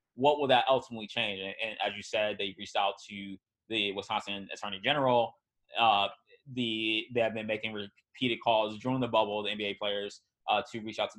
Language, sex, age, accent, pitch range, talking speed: English, male, 20-39, American, 110-130 Hz, 200 wpm